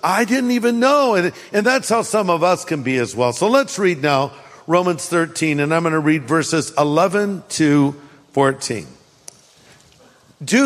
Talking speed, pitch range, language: 170 wpm, 165-215 Hz, English